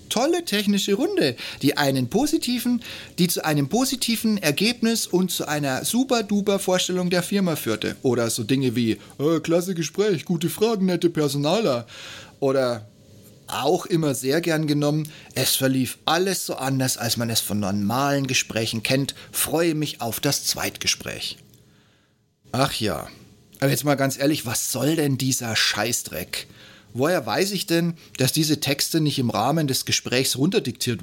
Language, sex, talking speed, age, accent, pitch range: German, male, 150 wpm, 30-49, German, 120-175 Hz